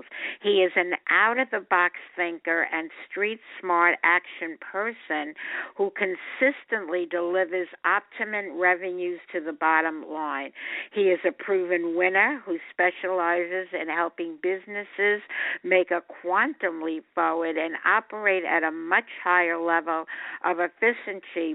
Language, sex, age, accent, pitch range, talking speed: English, female, 60-79, American, 165-195 Hz, 115 wpm